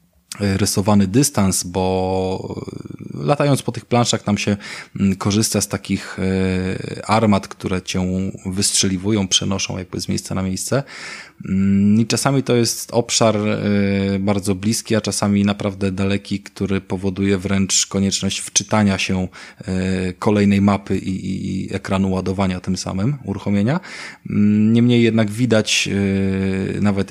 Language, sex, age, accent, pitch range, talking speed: Polish, male, 20-39, native, 95-100 Hz, 115 wpm